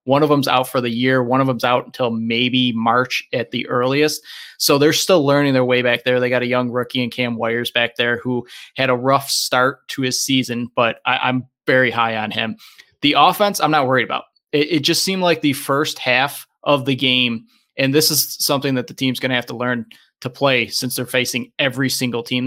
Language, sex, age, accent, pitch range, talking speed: English, male, 20-39, American, 125-145 Hz, 230 wpm